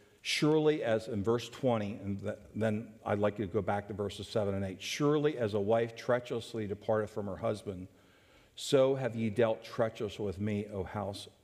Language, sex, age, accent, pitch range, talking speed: English, male, 60-79, American, 100-120 Hz, 190 wpm